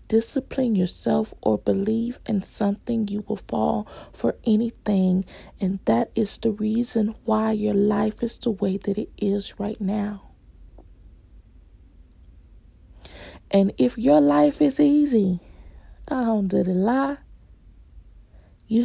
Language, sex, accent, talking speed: English, female, American, 125 wpm